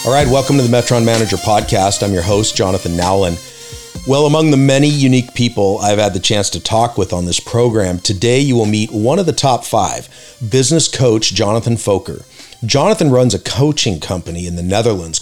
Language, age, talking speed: English, 40-59, 195 wpm